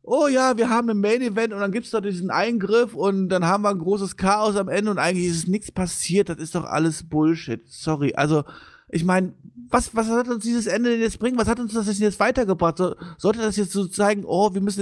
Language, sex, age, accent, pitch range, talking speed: German, male, 50-69, German, 185-235 Hz, 240 wpm